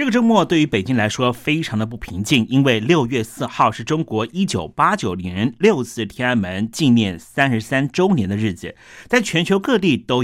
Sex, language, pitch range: male, Chinese, 115-170 Hz